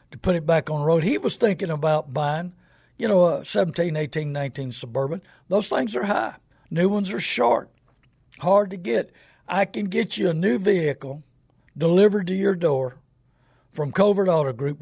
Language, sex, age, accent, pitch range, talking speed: English, male, 60-79, American, 135-170 Hz, 180 wpm